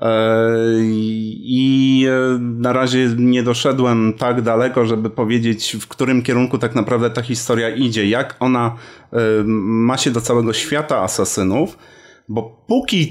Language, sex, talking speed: Polish, male, 125 wpm